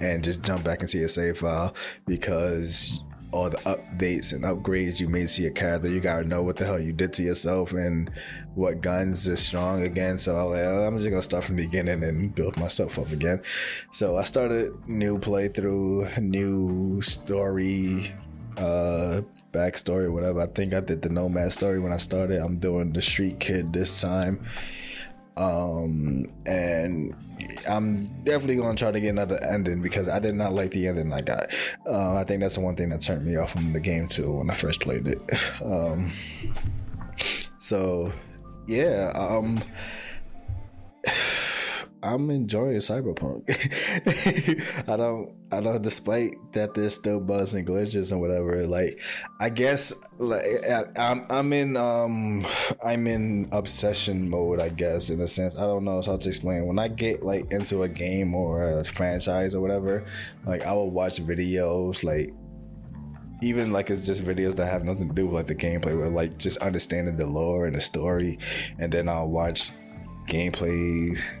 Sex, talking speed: male, 175 wpm